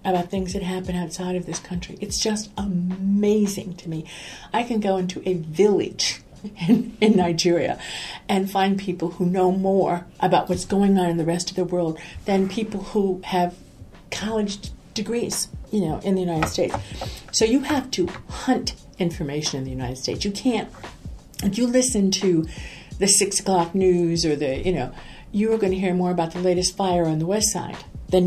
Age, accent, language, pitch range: 50-69, American, English, 170-200 Hz